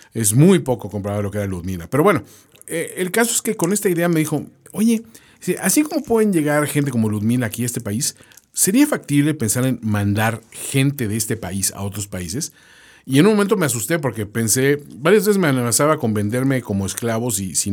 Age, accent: 40-59, Mexican